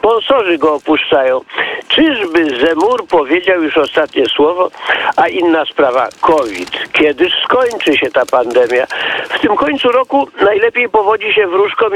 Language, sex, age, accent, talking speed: Polish, male, 50-69, native, 130 wpm